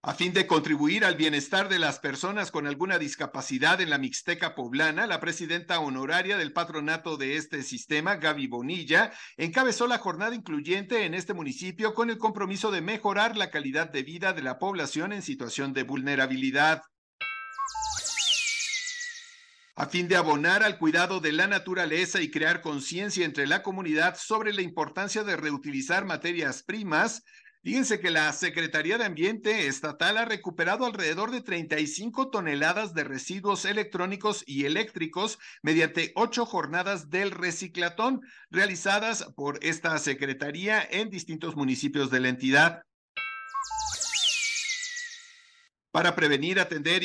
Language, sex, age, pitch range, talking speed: Spanish, male, 50-69, 150-215 Hz, 135 wpm